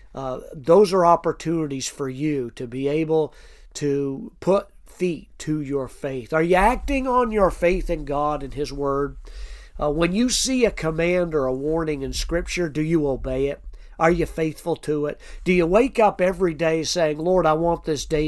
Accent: American